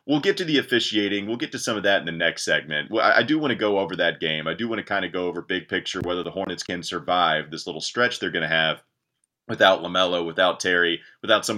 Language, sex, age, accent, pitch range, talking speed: English, male, 30-49, American, 85-115 Hz, 265 wpm